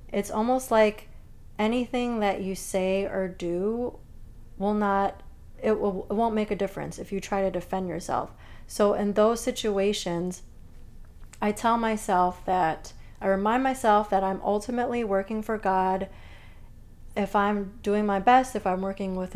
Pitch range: 185-220 Hz